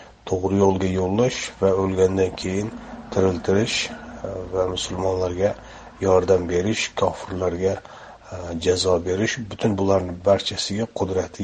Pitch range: 95-105 Hz